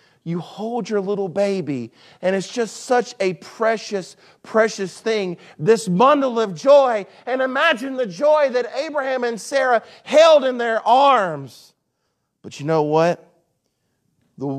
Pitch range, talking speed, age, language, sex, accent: 140-210 Hz, 140 wpm, 40-59, English, male, American